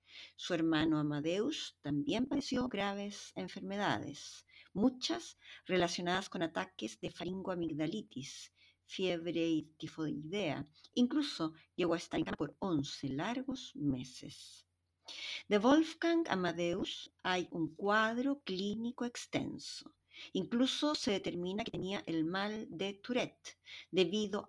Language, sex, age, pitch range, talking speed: Spanish, female, 50-69, 155-235 Hz, 110 wpm